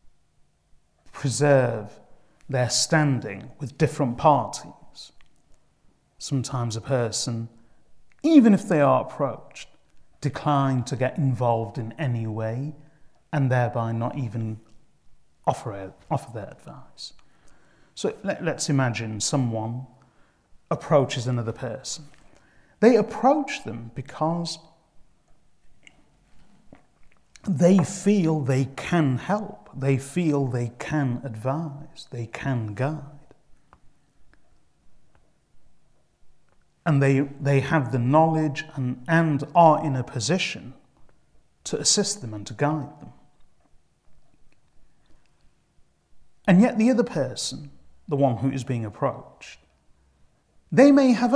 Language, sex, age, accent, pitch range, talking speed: English, male, 30-49, British, 120-160 Hz, 105 wpm